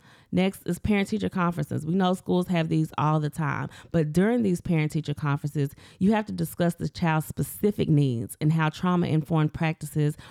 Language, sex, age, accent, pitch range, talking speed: English, female, 30-49, American, 145-175 Hz, 185 wpm